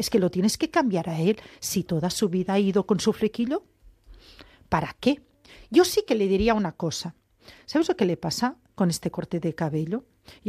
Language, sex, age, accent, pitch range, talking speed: Spanish, female, 40-59, Spanish, 185-270 Hz, 210 wpm